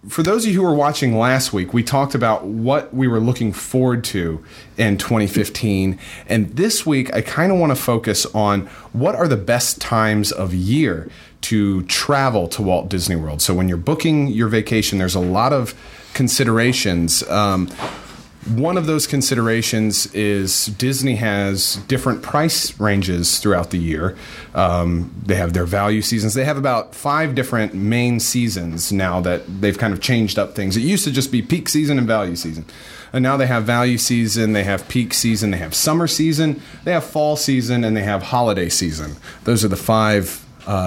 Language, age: English, 30-49